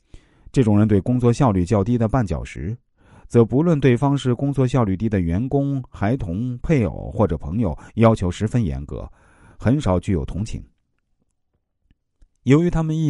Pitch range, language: 90-135 Hz, Chinese